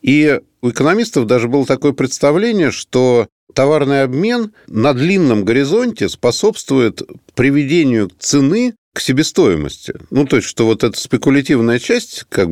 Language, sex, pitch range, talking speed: Russian, male, 95-145 Hz, 130 wpm